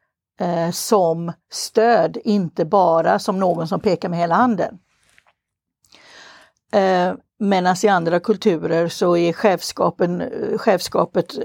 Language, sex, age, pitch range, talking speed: Swedish, female, 60-79, 175-225 Hz, 100 wpm